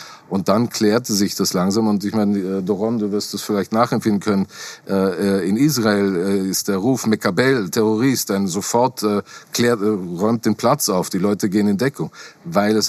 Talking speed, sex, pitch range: 170 wpm, male, 95-110 Hz